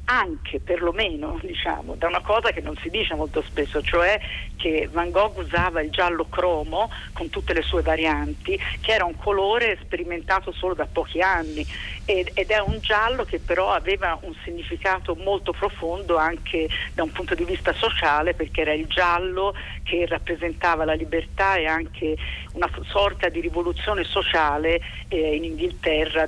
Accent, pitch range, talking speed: native, 155-205 Hz, 160 wpm